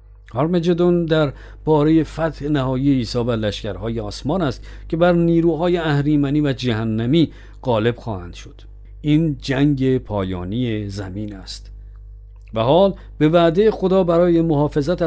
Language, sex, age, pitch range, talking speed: Persian, male, 50-69, 110-160 Hz, 120 wpm